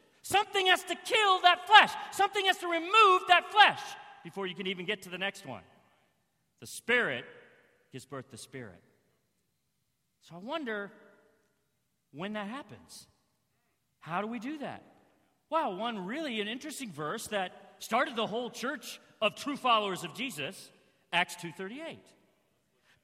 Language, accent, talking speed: English, American, 145 wpm